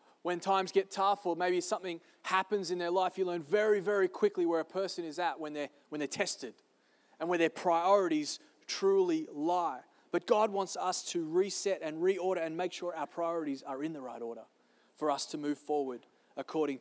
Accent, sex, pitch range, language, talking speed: Australian, male, 160-205 Hz, English, 200 wpm